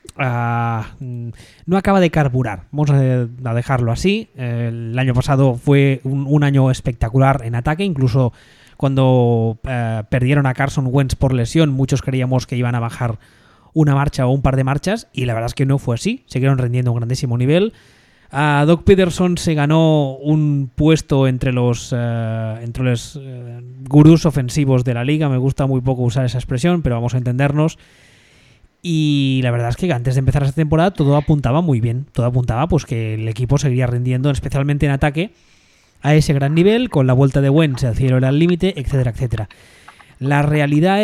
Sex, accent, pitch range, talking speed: male, Spanish, 125-155 Hz, 185 wpm